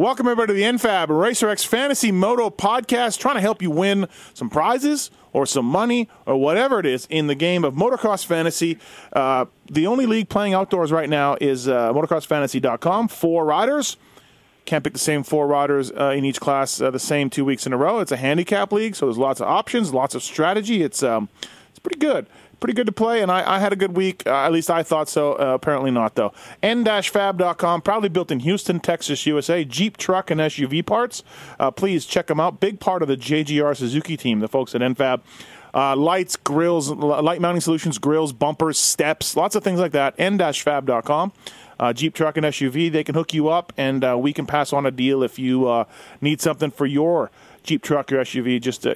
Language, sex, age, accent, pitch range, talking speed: English, male, 30-49, American, 140-190 Hz, 210 wpm